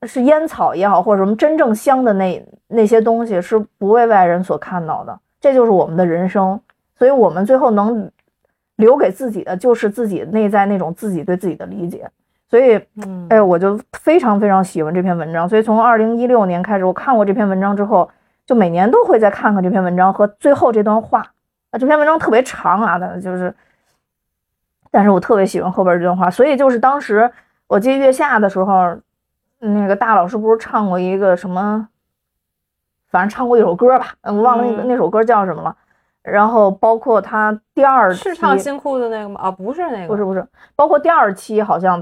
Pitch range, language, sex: 185-240 Hz, Chinese, female